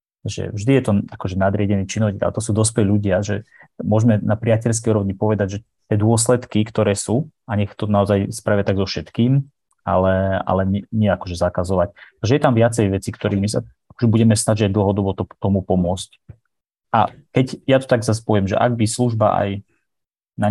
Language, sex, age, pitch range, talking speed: Slovak, male, 30-49, 100-115 Hz, 180 wpm